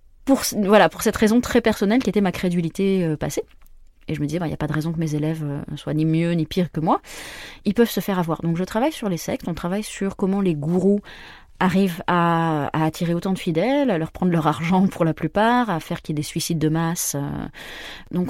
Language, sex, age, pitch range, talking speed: French, female, 20-39, 160-200 Hz, 255 wpm